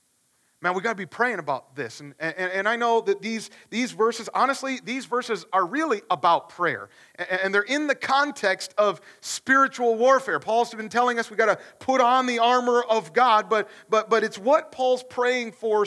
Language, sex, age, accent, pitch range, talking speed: English, male, 40-59, American, 215-265 Hz, 195 wpm